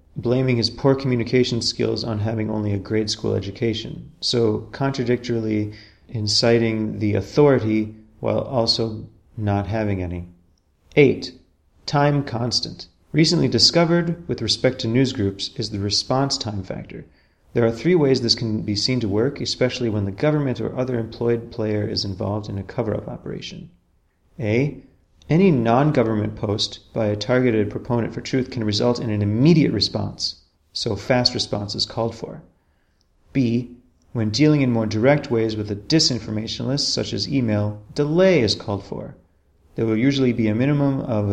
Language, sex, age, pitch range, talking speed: English, male, 30-49, 100-125 Hz, 155 wpm